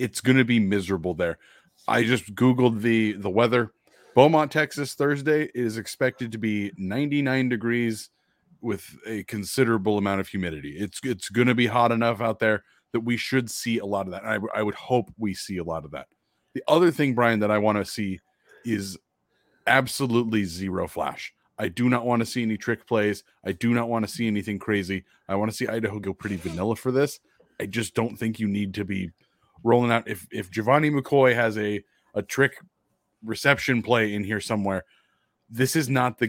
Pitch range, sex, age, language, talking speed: 100-125 Hz, male, 30-49, English, 200 wpm